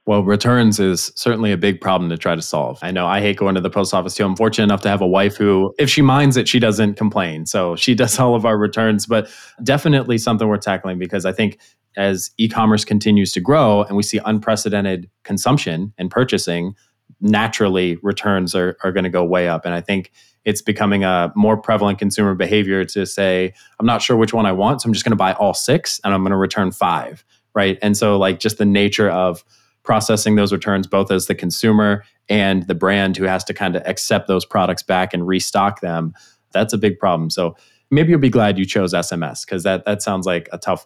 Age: 20-39